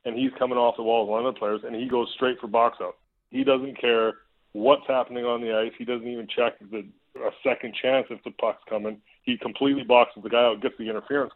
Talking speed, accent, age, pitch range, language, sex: 245 wpm, American, 30-49, 110-135 Hz, English, male